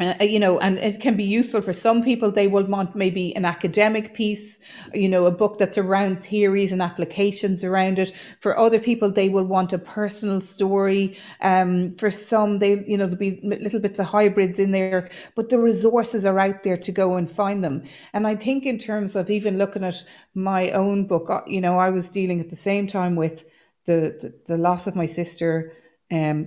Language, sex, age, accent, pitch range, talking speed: English, female, 40-59, Irish, 180-205 Hz, 210 wpm